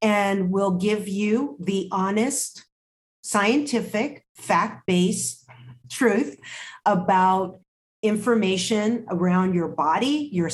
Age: 40-59